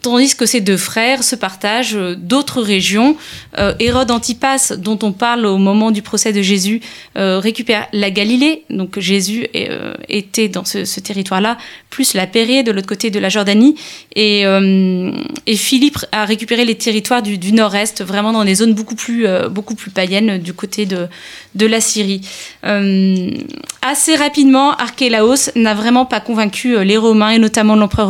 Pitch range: 200-245 Hz